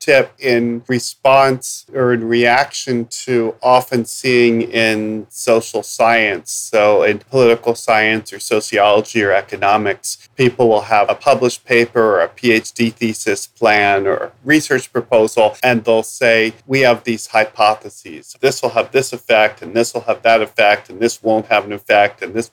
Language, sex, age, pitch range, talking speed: English, male, 40-59, 115-130 Hz, 160 wpm